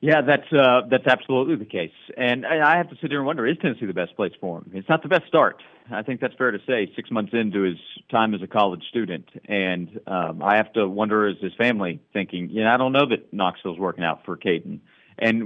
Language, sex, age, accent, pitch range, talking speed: English, male, 40-59, American, 95-120 Hz, 250 wpm